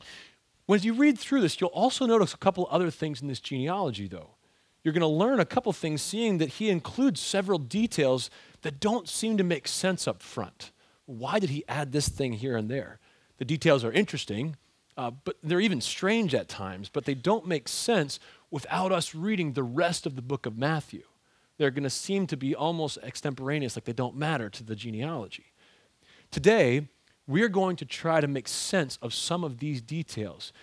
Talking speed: 200 wpm